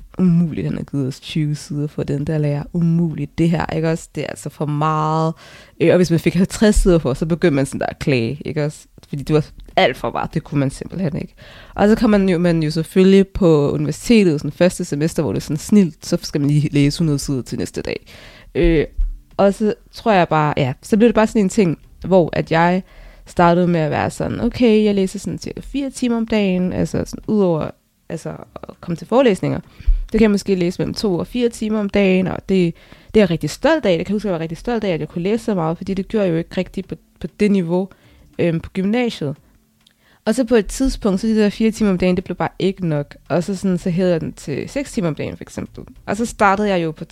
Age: 20-39